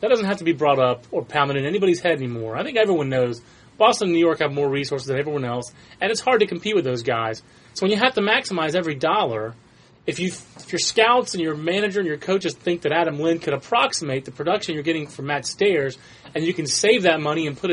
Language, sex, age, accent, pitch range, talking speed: English, male, 30-49, American, 140-190 Hz, 255 wpm